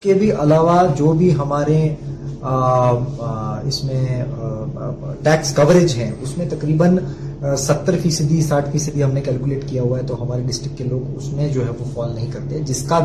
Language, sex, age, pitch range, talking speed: Urdu, male, 30-49, 140-165 Hz, 180 wpm